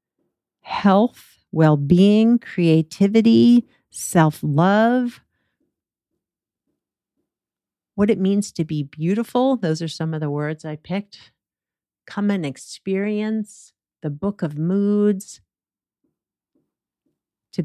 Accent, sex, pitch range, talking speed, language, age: American, female, 145-185 Hz, 90 wpm, English, 50-69